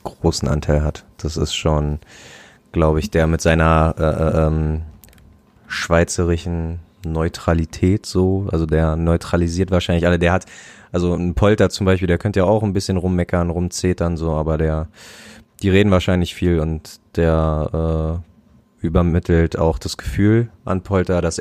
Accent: German